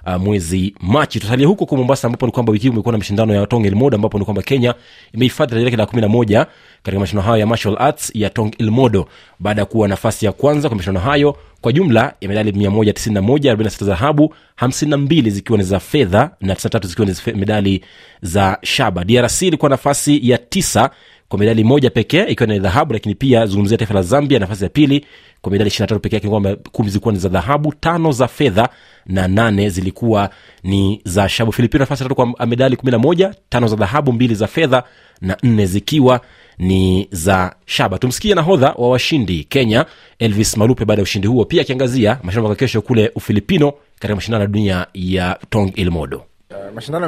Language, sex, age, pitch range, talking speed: Swahili, male, 30-49, 100-125 Hz, 145 wpm